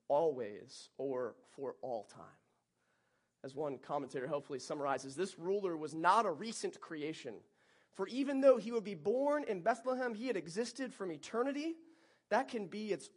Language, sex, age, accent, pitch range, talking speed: English, male, 30-49, American, 145-220 Hz, 160 wpm